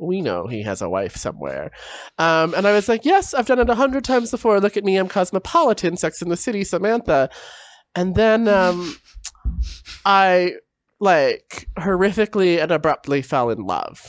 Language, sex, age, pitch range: English, male, 20-39, 165-240 Hz